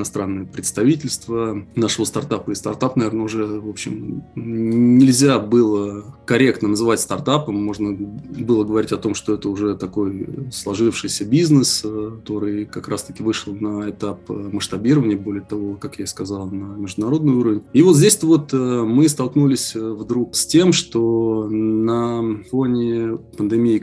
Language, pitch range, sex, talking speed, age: Russian, 105-130 Hz, male, 140 wpm, 20-39